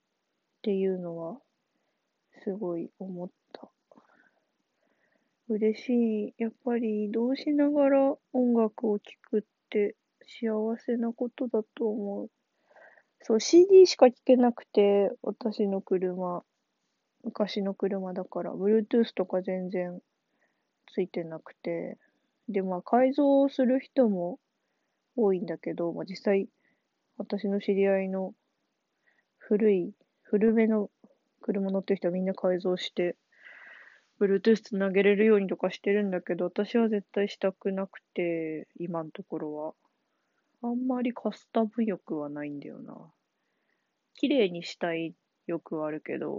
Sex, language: female, Japanese